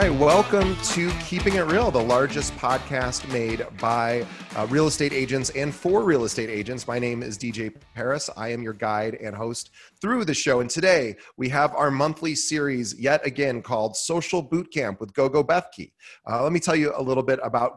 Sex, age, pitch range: male, 30-49, 110-140 Hz